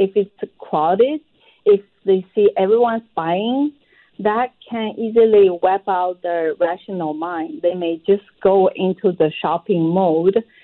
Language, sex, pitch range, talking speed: English, female, 175-215 Hz, 135 wpm